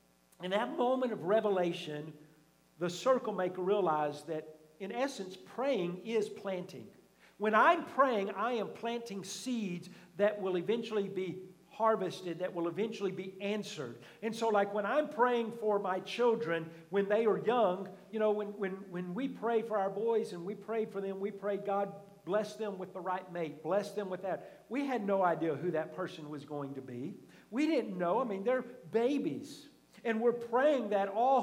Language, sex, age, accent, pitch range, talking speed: English, male, 50-69, American, 160-210 Hz, 185 wpm